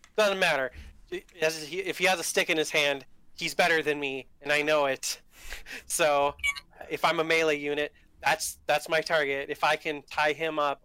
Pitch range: 140-160 Hz